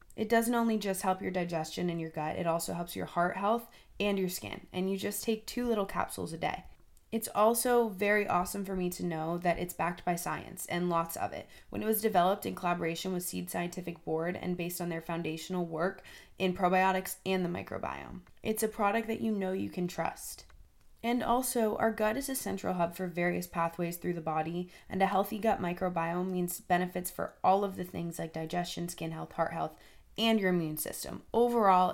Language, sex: English, female